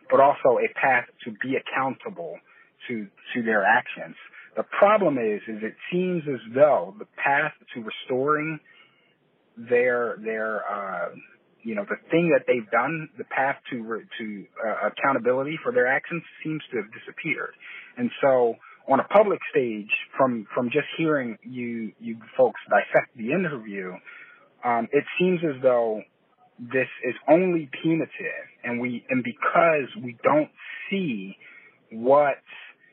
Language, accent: English, American